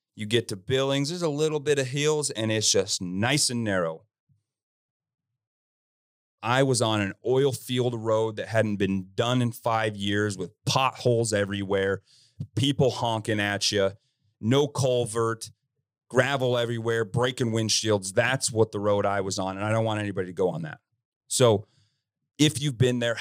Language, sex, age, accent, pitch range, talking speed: English, male, 30-49, American, 105-135 Hz, 165 wpm